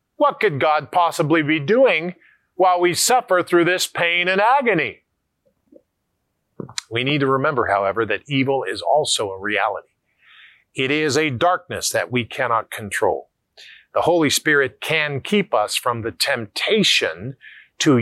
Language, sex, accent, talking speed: English, male, American, 145 wpm